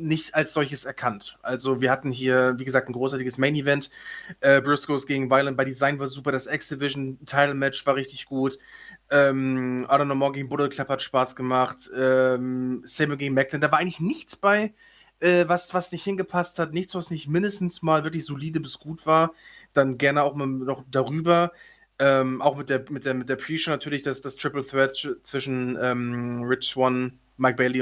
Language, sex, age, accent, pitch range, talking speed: German, male, 20-39, German, 135-155 Hz, 190 wpm